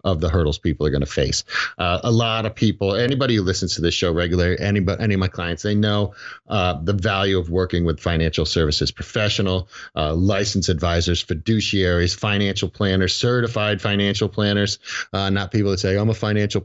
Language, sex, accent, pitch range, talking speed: English, male, American, 95-115 Hz, 190 wpm